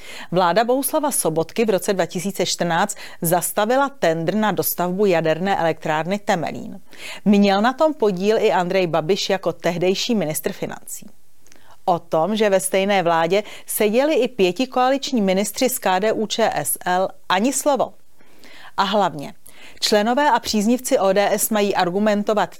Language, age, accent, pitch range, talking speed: Czech, 40-59, native, 180-220 Hz, 125 wpm